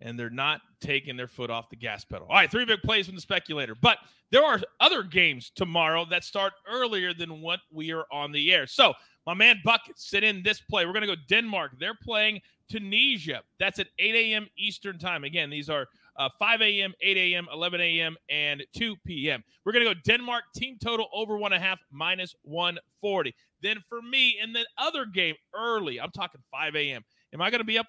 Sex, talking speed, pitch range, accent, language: male, 210 wpm, 165-225 Hz, American, English